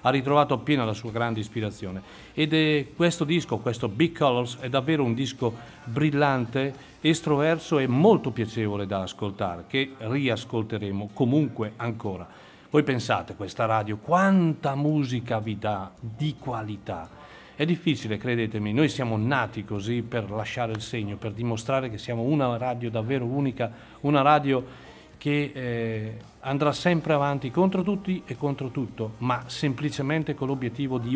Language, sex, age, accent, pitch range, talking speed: Italian, male, 40-59, native, 110-145 Hz, 145 wpm